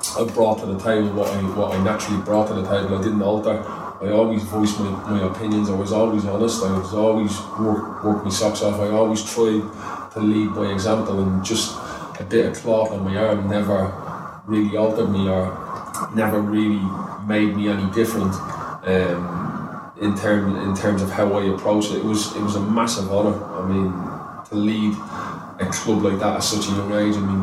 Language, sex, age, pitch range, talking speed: English, male, 20-39, 95-105 Hz, 205 wpm